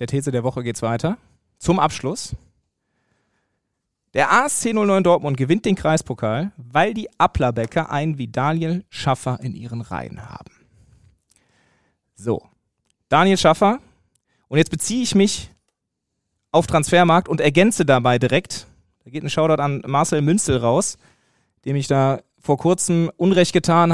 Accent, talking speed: German, 140 wpm